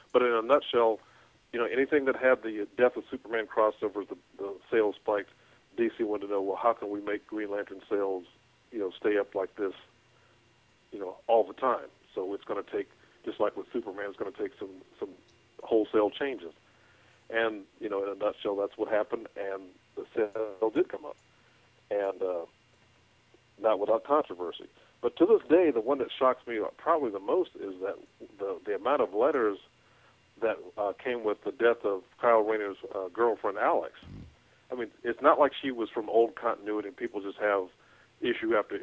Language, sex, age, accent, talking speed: English, male, 50-69, American, 195 wpm